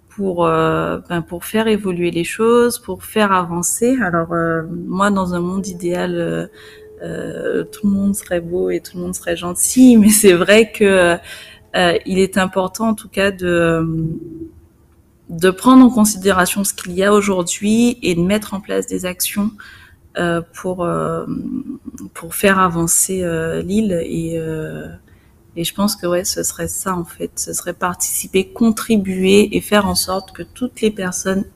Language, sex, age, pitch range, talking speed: French, female, 30-49, 170-200 Hz, 170 wpm